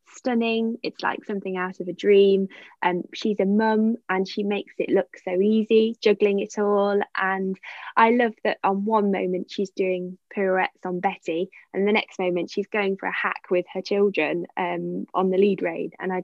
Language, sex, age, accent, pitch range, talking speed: English, female, 10-29, British, 185-230 Hz, 200 wpm